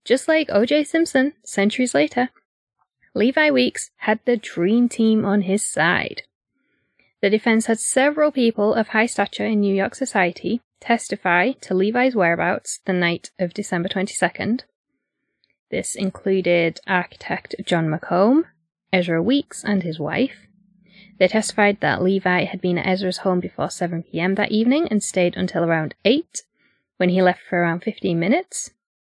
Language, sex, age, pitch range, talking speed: English, female, 20-39, 190-250 Hz, 145 wpm